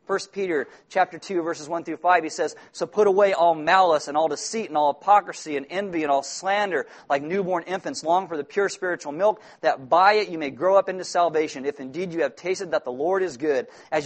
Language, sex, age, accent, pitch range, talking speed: English, male, 40-59, American, 150-195 Hz, 235 wpm